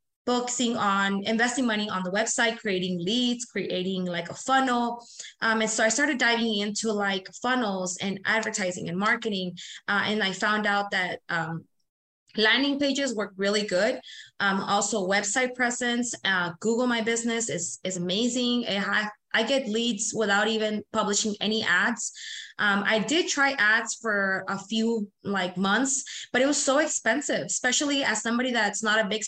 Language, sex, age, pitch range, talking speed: English, female, 20-39, 200-245 Hz, 165 wpm